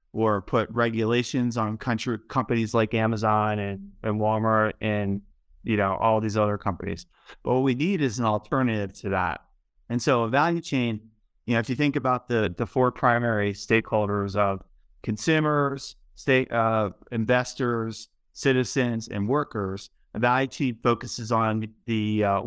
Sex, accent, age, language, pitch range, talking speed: male, American, 30-49, English, 105-125 Hz, 155 wpm